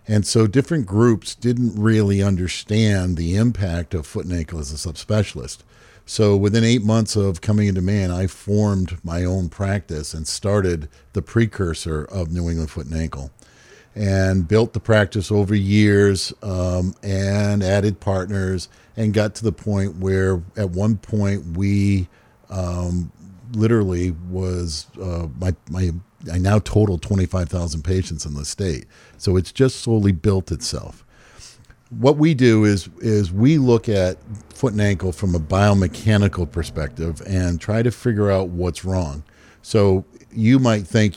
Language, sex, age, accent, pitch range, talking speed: English, male, 50-69, American, 90-110 Hz, 155 wpm